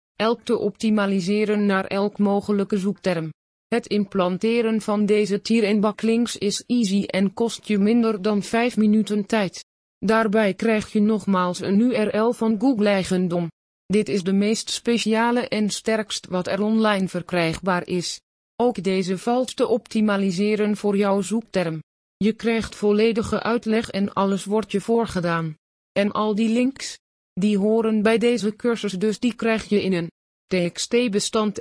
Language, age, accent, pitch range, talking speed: Dutch, 20-39, Dutch, 195-225 Hz, 150 wpm